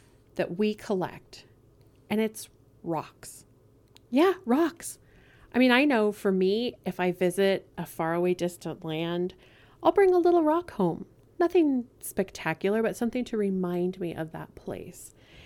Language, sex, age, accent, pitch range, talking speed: English, female, 30-49, American, 170-235 Hz, 145 wpm